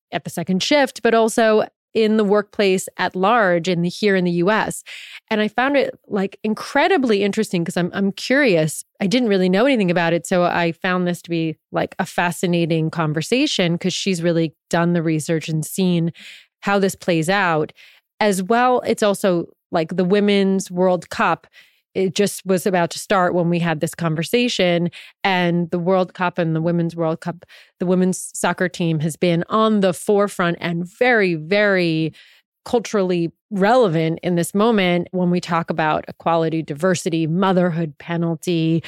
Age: 30-49